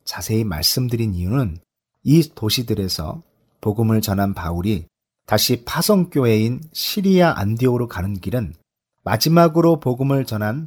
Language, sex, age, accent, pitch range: Korean, male, 40-59, native, 100-145 Hz